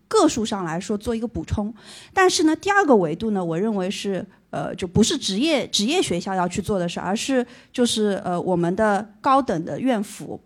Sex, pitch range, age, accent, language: female, 185-255 Hz, 30-49, native, Chinese